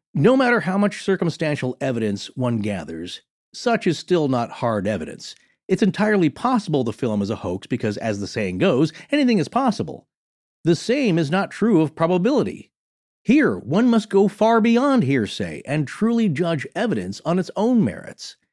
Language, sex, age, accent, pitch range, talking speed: English, male, 40-59, American, 130-195 Hz, 170 wpm